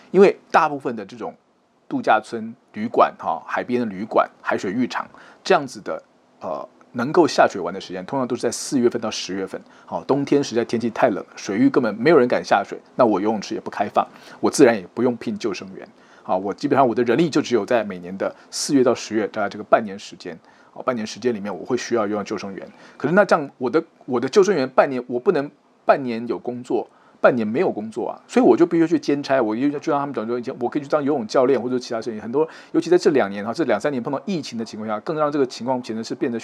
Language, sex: Chinese, male